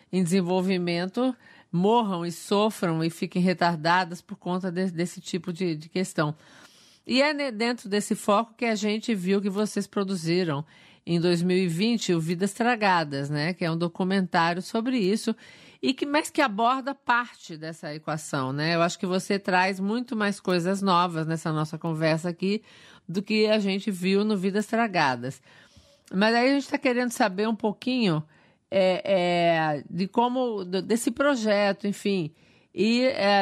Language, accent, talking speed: Portuguese, Brazilian, 160 wpm